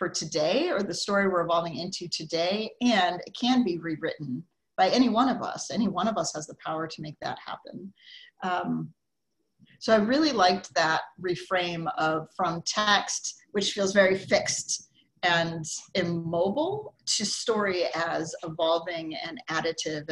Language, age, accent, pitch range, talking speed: English, 40-59, American, 170-220 Hz, 155 wpm